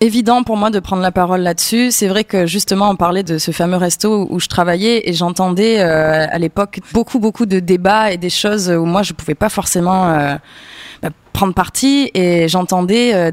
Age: 20-39